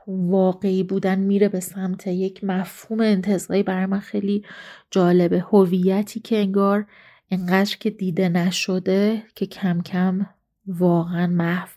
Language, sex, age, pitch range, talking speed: Persian, female, 30-49, 185-210 Hz, 120 wpm